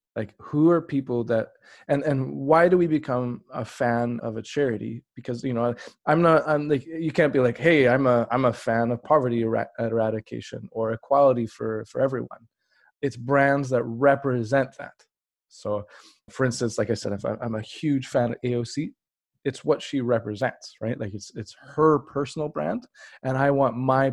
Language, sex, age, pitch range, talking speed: English, male, 20-39, 115-140 Hz, 185 wpm